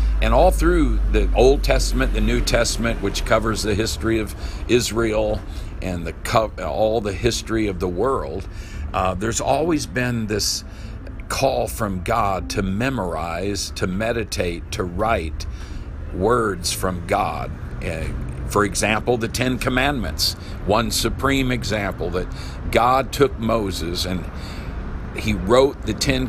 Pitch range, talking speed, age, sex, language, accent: 90-115 Hz, 130 wpm, 50-69, male, English, American